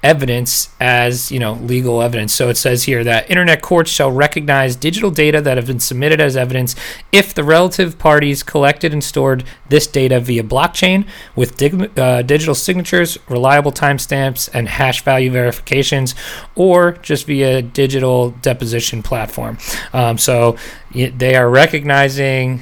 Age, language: 30-49, English